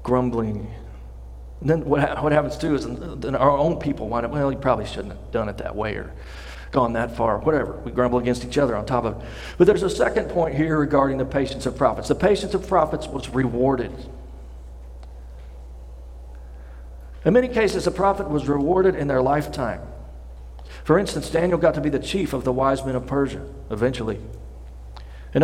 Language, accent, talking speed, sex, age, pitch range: English, American, 195 wpm, male, 40-59, 95-155 Hz